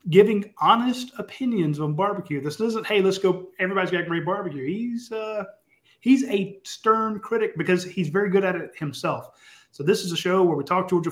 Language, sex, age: English, male, 30-49